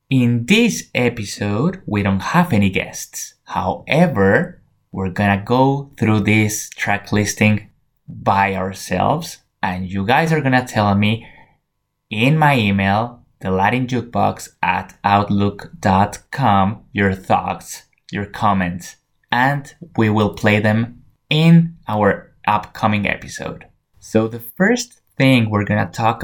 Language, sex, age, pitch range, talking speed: English, male, 20-39, 100-125 Hz, 120 wpm